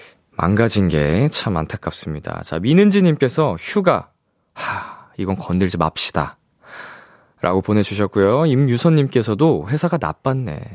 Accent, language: native, Korean